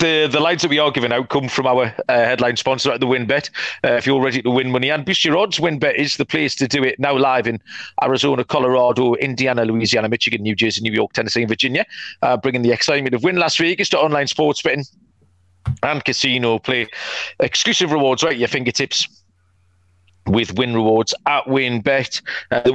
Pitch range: 115-145 Hz